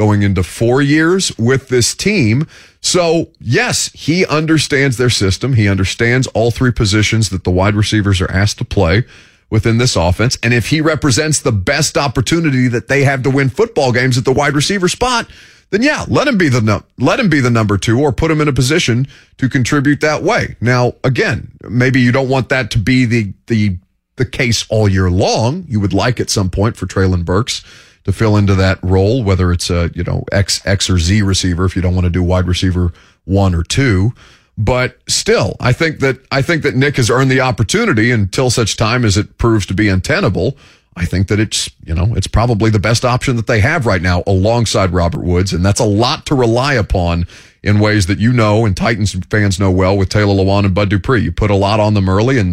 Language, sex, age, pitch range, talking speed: English, male, 30-49, 95-130 Hz, 220 wpm